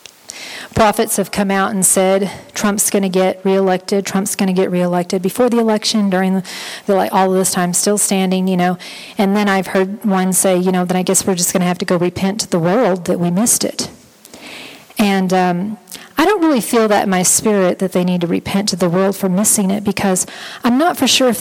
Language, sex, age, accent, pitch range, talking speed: English, female, 40-59, American, 185-225 Hz, 235 wpm